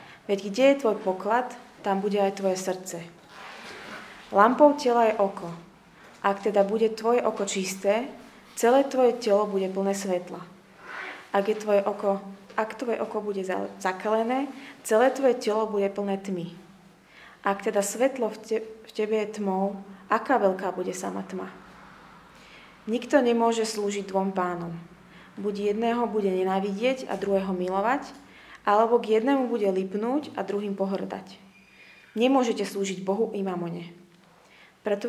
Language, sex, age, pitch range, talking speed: Slovak, female, 20-39, 190-225 Hz, 135 wpm